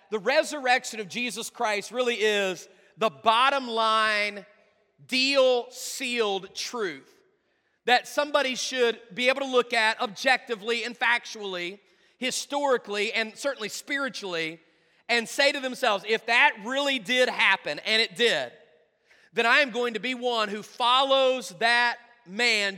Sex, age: male, 40-59